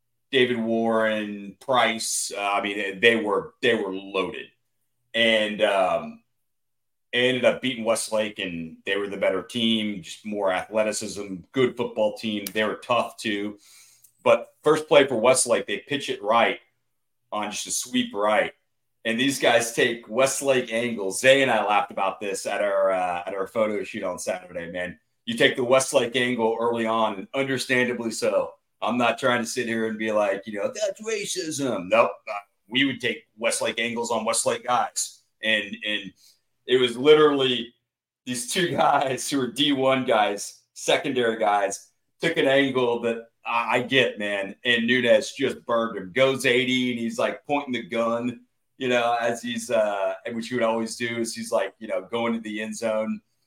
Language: English